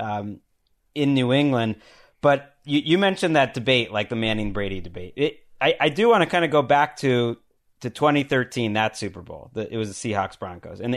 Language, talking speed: English, 210 wpm